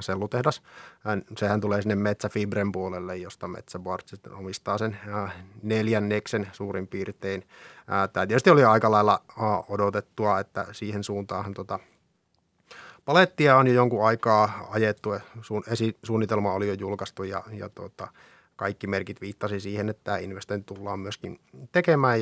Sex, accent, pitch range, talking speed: male, native, 100-115 Hz, 125 wpm